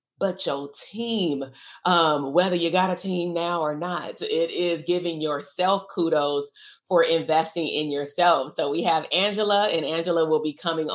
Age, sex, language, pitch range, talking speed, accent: 30-49, female, English, 155-185 Hz, 165 wpm, American